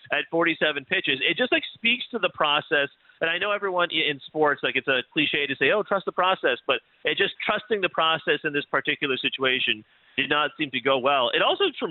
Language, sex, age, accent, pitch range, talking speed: English, male, 30-49, American, 135-180 Hz, 225 wpm